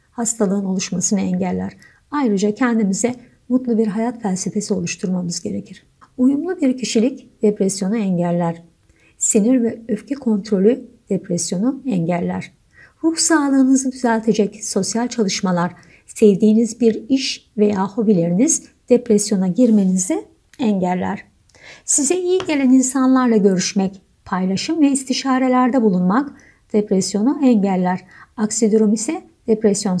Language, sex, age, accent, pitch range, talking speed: Turkish, female, 50-69, native, 190-255 Hz, 100 wpm